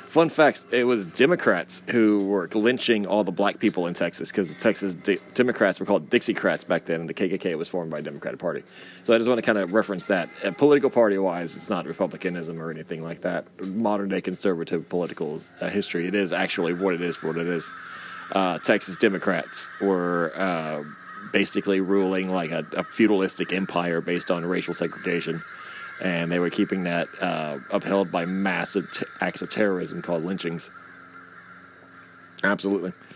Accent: American